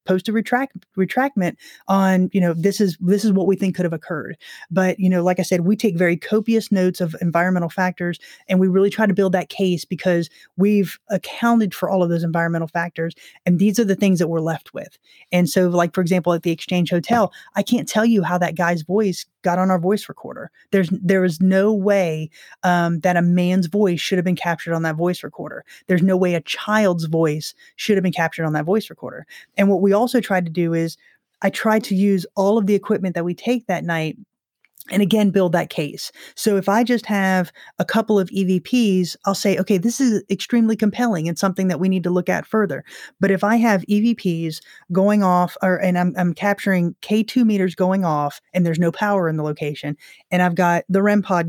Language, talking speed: English, 225 wpm